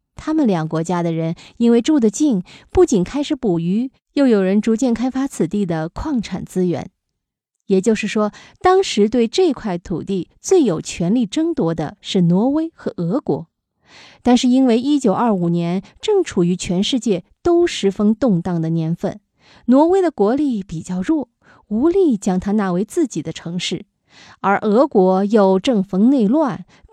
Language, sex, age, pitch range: Chinese, female, 20-39, 180-285 Hz